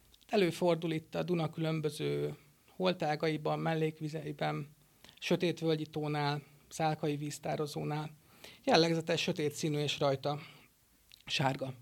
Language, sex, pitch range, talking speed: Hungarian, male, 140-160 Hz, 85 wpm